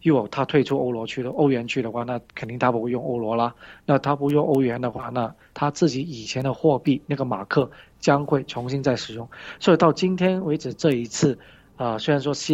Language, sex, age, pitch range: Chinese, male, 20-39, 120-145 Hz